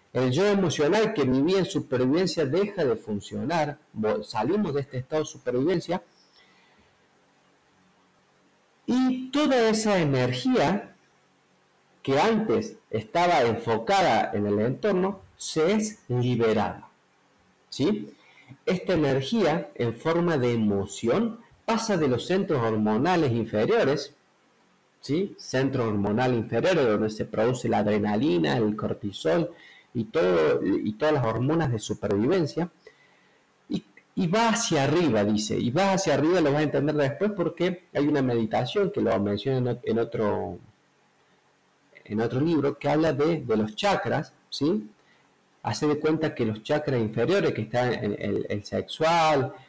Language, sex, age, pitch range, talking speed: Spanish, male, 50-69, 115-170 Hz, 135 wpm